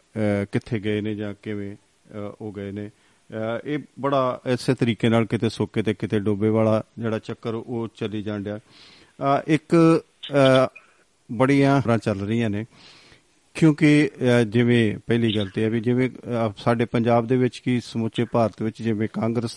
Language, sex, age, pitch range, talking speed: Punjabi, male, 40-59, 110-130 Hz, 145 wpm